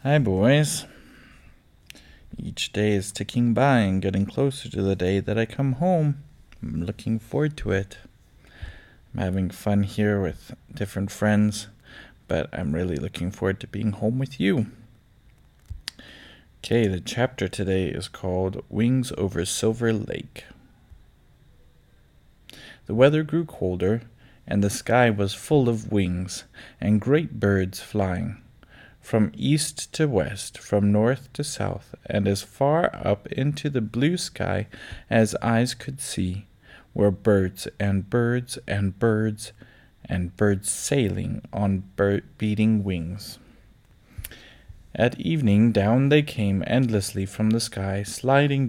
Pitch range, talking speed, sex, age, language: 100-120 Hz, 130 wpm, male, 20-39, English